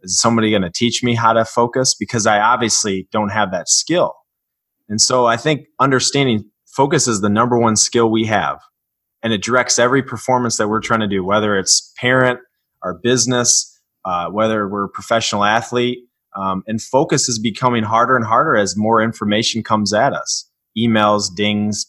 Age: 30-49